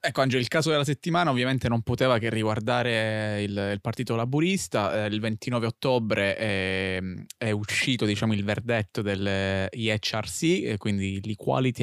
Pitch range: 100-115 Hz